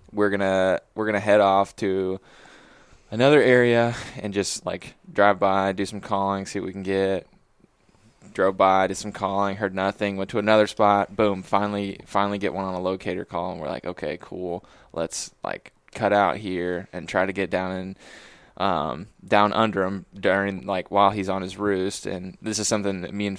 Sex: male